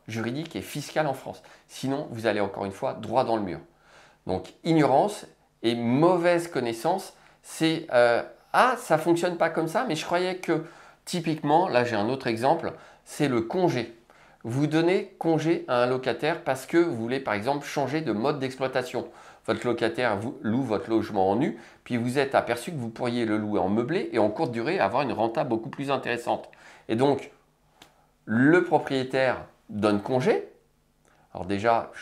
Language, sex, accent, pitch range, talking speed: French, male, French, 115-165 Hz, 180 wpm